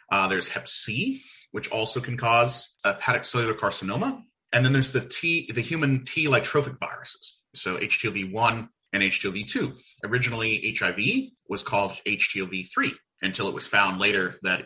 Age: 30-49